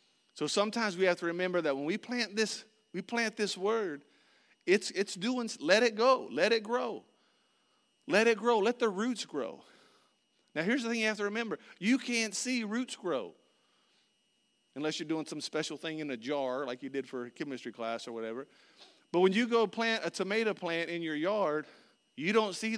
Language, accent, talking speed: English, American, 200 wpm